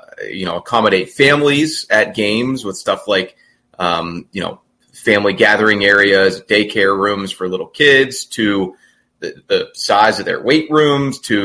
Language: English